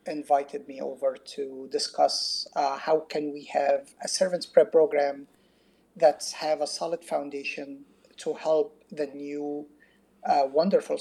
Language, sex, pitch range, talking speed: English, male, 145-235 Hz, 135 wpm